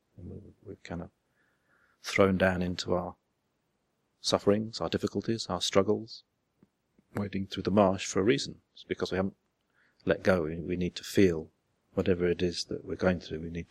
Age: 30-49